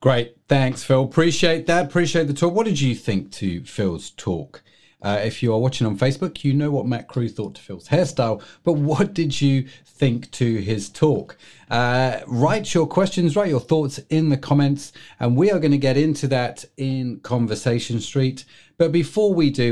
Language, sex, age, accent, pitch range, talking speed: English, male, 40-59, British, 120-155 Hz, 195 wpm